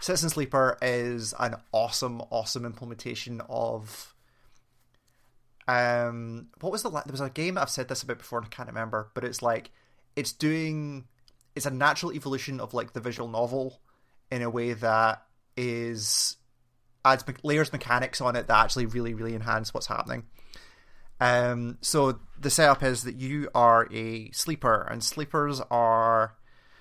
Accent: British